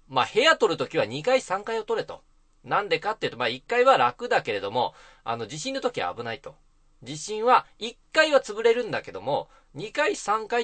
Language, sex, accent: Japanese, male, native